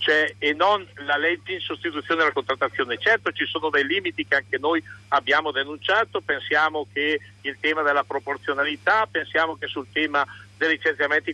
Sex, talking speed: male, 160 wpm